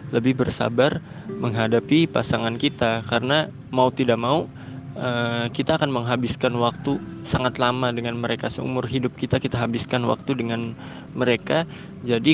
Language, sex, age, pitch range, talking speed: Indonesian, male, 20-39, 120-140 Hz, 125 wpm